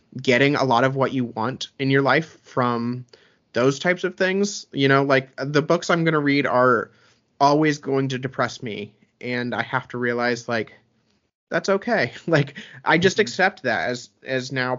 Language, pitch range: English, 120-140 Hz